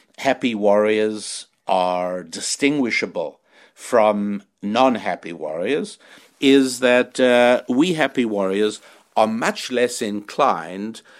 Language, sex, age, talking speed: English, male, 60-79, 90 wpm